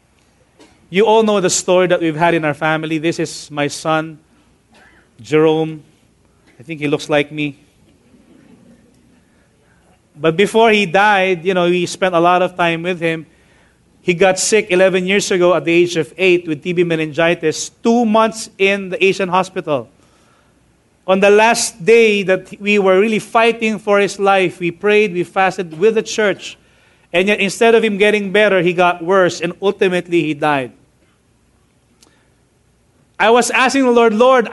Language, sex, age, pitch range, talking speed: English, male, 30-49, 150-210 Hz, 165 wpm